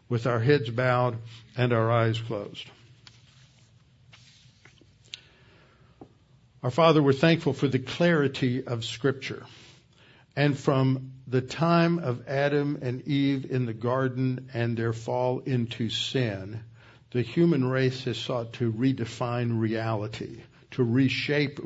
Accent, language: American, English